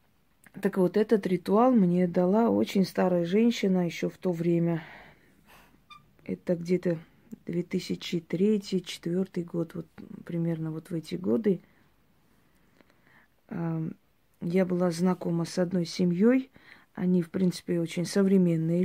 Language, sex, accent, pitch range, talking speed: Russian, female, native, 170-200 Hz, 110 wpm